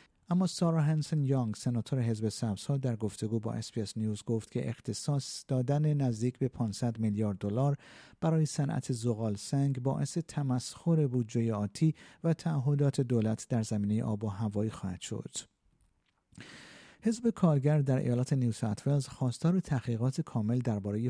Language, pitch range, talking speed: Persian, 110-140 Hz, 140 wpm